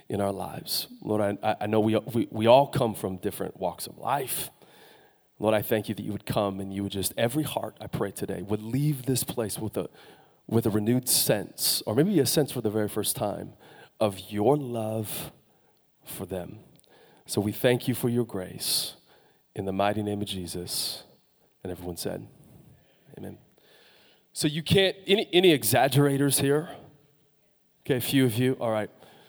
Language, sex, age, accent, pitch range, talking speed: English, male, 30-49, American, 110-150 Hz, 180 wpm